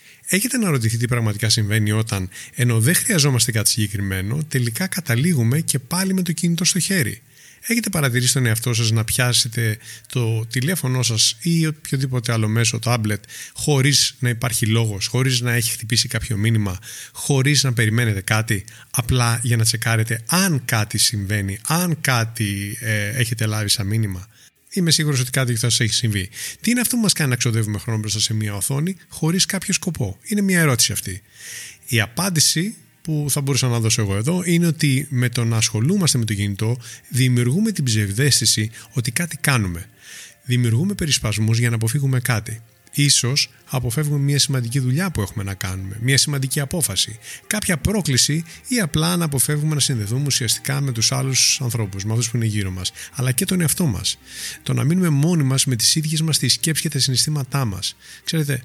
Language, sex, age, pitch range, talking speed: Greek, male, 20-39, 110-150 Hz, 175 wpm